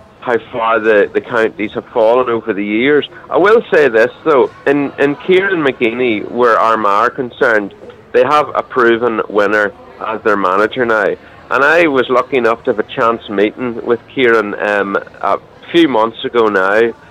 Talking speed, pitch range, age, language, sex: 175 wpm, 120-155 Hz, 30-49, English, male